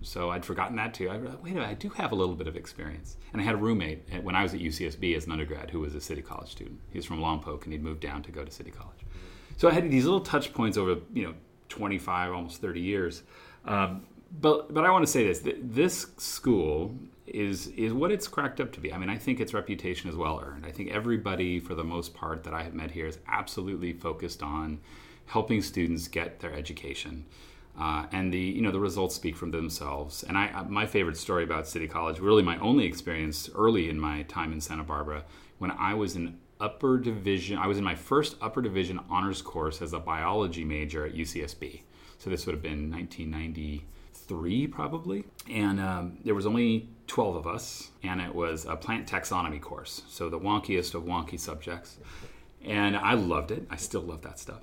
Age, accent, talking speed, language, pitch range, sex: 30-49, American, 220 wpm, English, 80-100 Hz, male